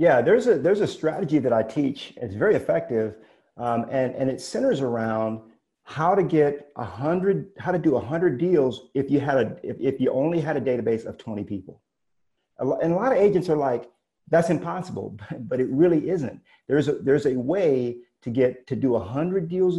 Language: English